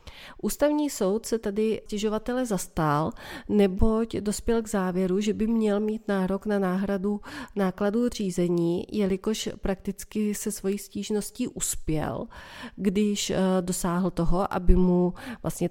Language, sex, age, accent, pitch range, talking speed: Czech, female, 30-49, native, 180-210 Hz, 120 wpm